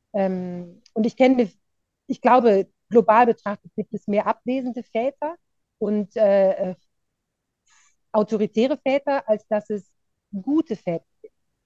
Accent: German